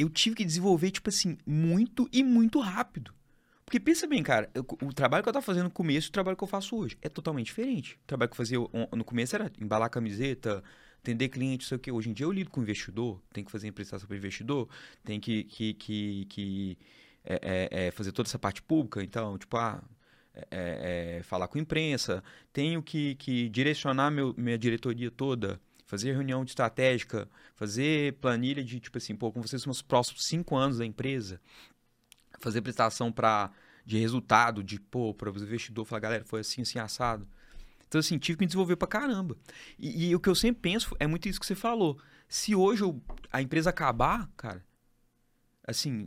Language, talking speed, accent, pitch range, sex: Portuguese, 195 wpm, Brazilian, 110-175 Hz, male